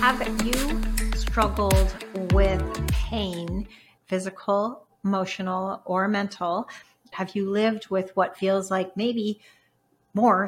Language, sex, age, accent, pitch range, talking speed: English, female, 40-59, American, 185-220 Hz, 105 wpm